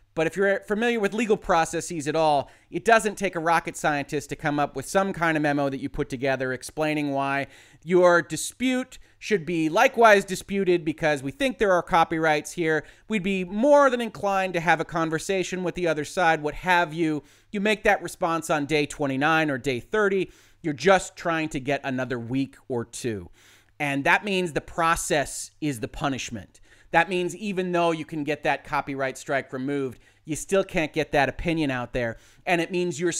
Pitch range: 135-175 Hz